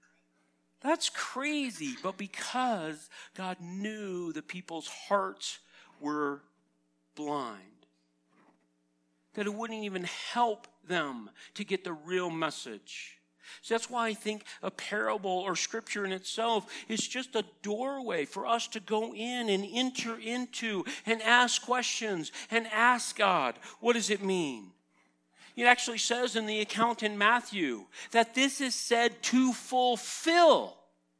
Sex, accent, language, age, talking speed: male, American, English, 50-69, 135 wpm